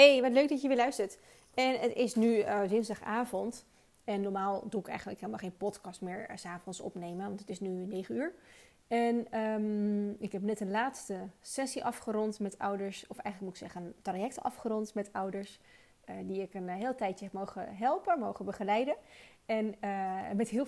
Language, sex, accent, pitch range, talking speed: Dutch, female, Dutch, 200-255 Hz, 195 wpm